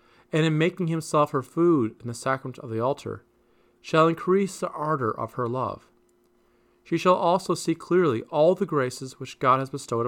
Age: 40-59